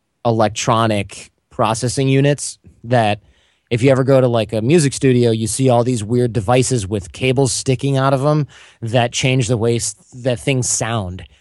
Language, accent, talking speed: English, American, 170 wpm